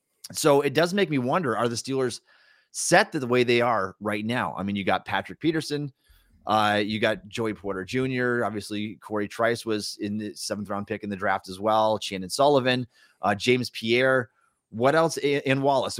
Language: English